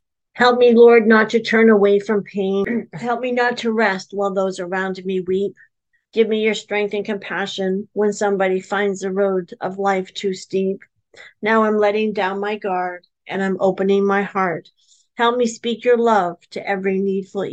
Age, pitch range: 50-69, 195-240 Hz